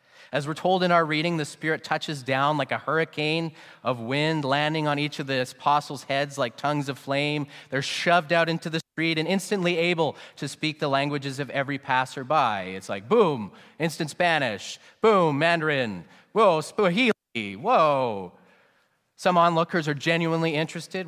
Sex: male